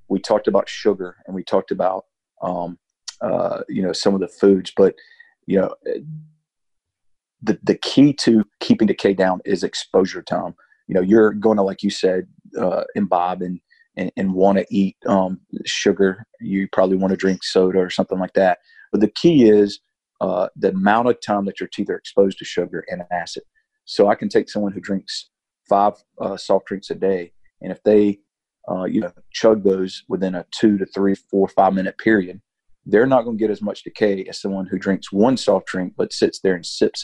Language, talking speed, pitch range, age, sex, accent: English, 200 wpm, 95-110 Hz, 40-59, male, American